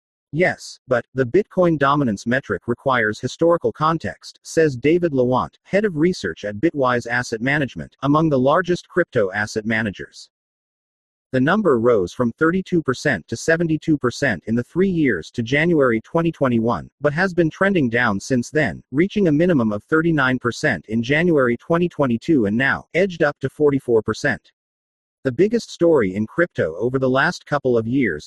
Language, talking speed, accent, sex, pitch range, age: English, 150 wpm, American, male, 120-165 Hz, 40-59